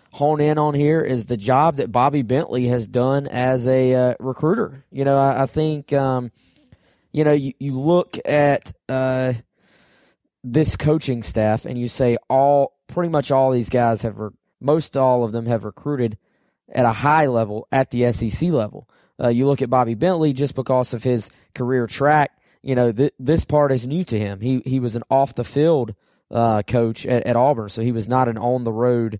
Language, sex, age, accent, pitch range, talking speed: English, male, 20-39, American, 115-135 Hz, 195 wpm